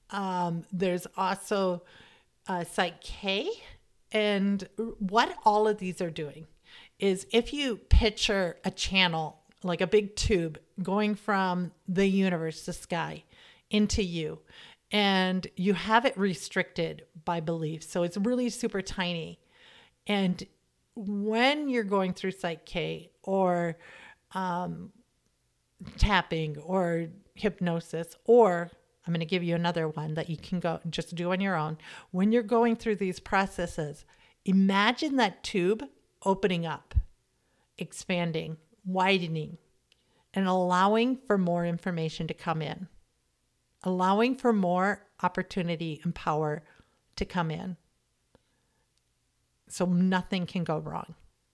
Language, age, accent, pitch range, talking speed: English, 40-59, American, 170-205 Hz, 125 wpm